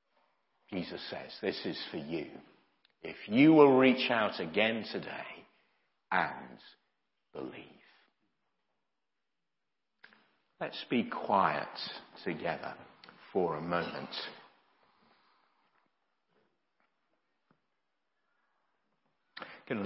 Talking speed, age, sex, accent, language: 70 wpm, 50-69, male, British, English